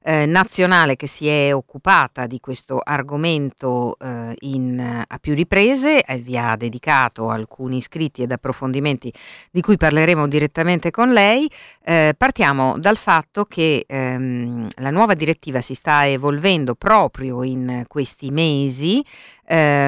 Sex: female